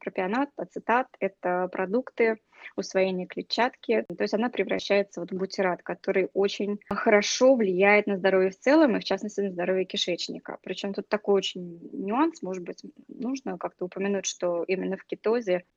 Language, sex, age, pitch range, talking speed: Russian, female, 20-39, 185-225 Hz, 160 wpm